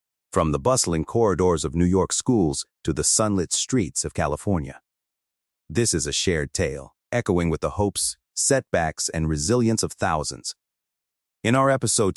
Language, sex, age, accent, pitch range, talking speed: English, male, 40-59, American, 75-105 Hz, 155 wpm